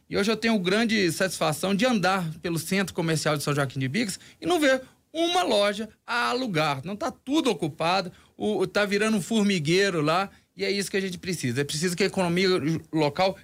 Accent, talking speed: Brazilian, 200 wpm